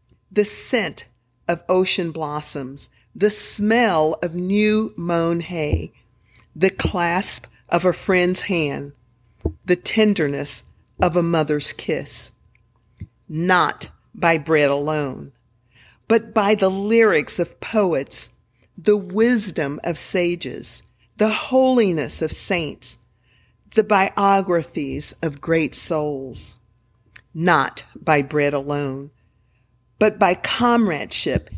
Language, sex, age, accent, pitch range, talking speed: English, female, 50-69, American, 130-190 Hz, 100 wpm